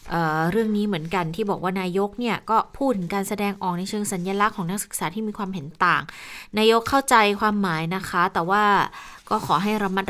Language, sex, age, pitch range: Thai, female, 20-39, 165-210 Hz